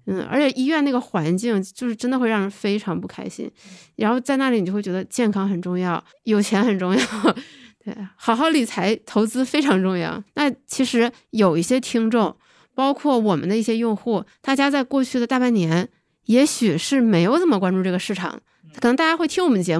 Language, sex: Chinese, female